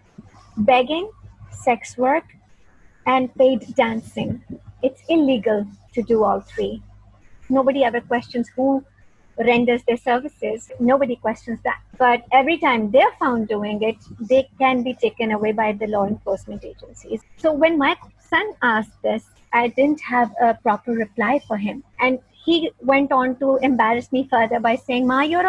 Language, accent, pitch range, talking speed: English, Indian, 235-295 Hz, 155 wpm